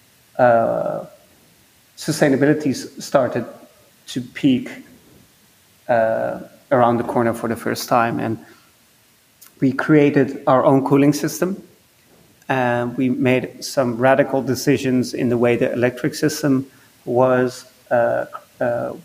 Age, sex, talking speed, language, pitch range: 30-49, male, 110 wpm, English, 120-145 Hz